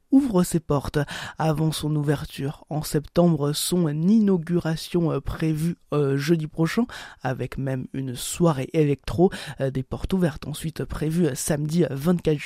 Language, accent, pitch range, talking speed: French, French, 145-180 Hz, 120 wpm